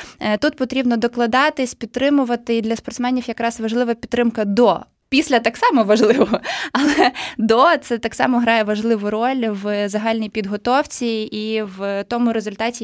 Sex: female